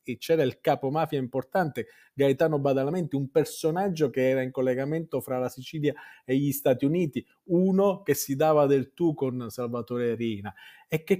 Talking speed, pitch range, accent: 170 wpm, 125-165 Hz, native